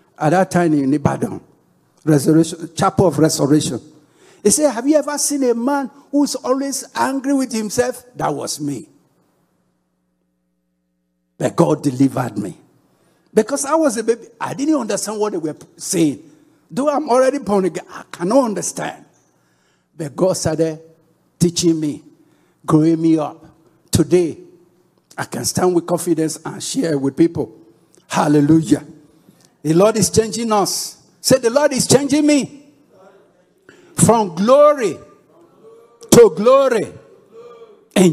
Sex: male